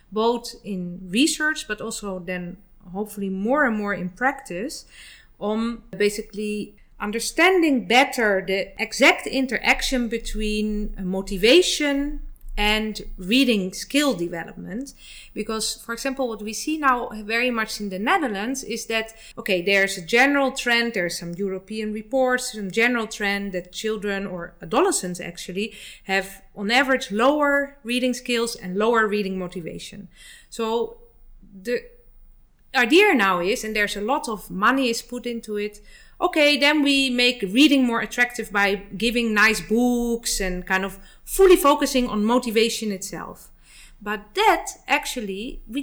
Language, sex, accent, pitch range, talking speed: Polish, female, Dutch, 200-260 Hz, 135 wpm